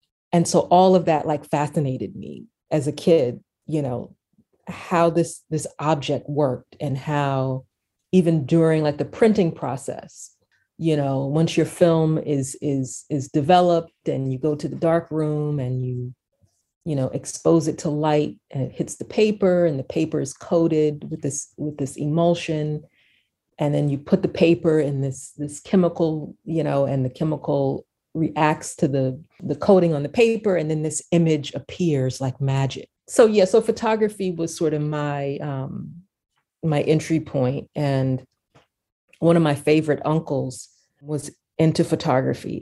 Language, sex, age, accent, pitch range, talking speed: English, female, 40-59, American, 135-165 Hz, 165 wpm